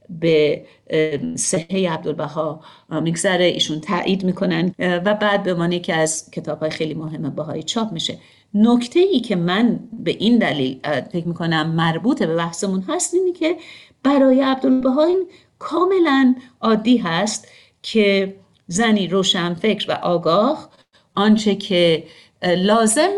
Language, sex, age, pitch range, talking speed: Persian, female, 50-69, 170-220 Hz, 125 wpm